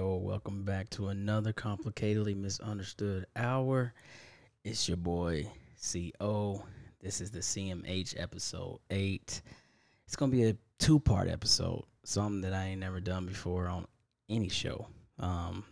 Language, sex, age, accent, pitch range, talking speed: English, male, 10-29, American, 95-110 Hz, 135 wpm